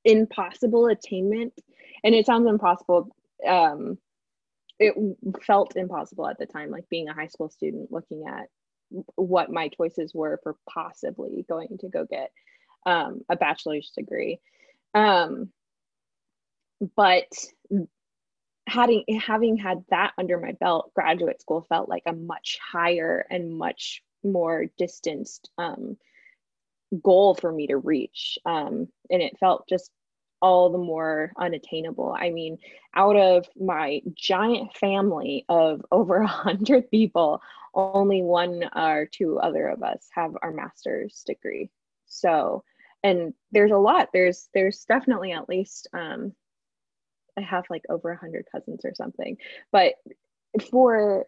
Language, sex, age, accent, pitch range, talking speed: English, female, 20-39, American, 175-235 Hz, 130 wpm